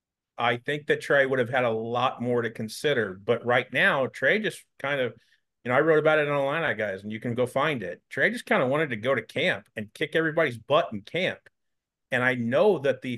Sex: male